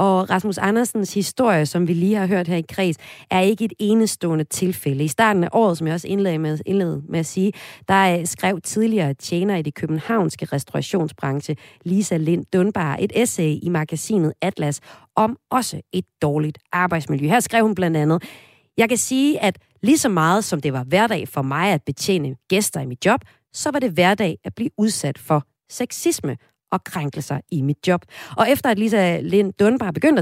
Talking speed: 195 wpm